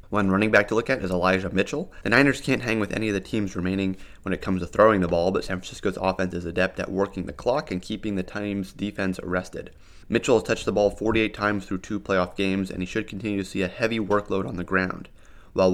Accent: American